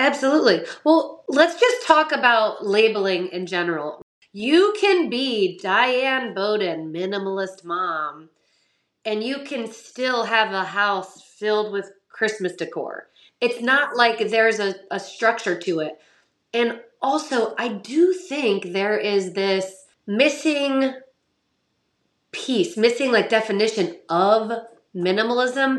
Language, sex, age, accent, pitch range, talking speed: English, female, 30-49, American, 190-255 Hz, 120 wpm